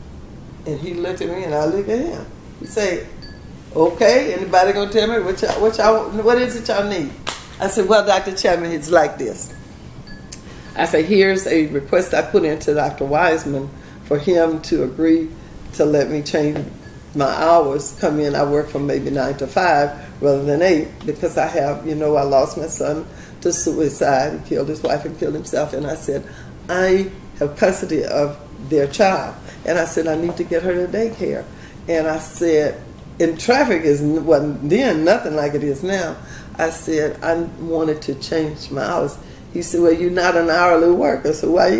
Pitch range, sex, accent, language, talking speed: 150-180 Hz, female, American, English, 195 wpm